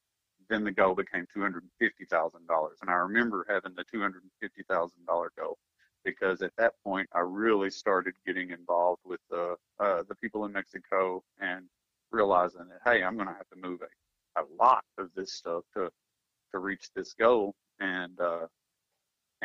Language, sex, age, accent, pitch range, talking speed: English, male, 50-69, American, 90-110 Hz, 190 wpm